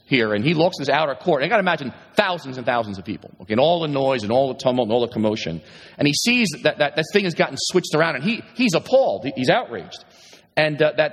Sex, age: male, 40-59